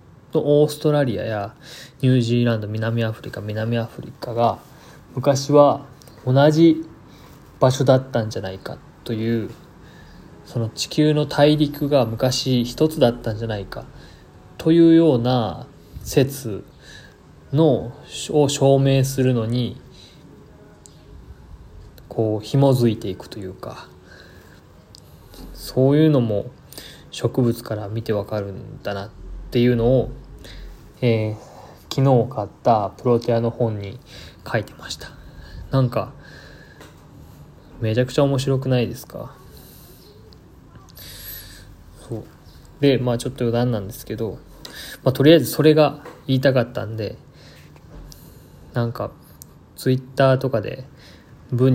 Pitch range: 105-135 Hz